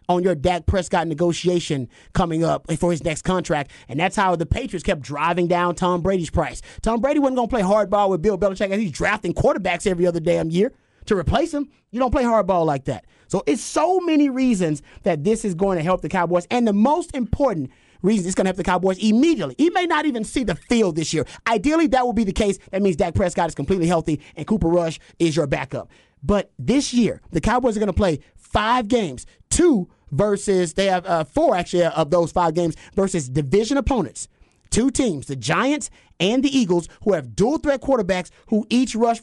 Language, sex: English, male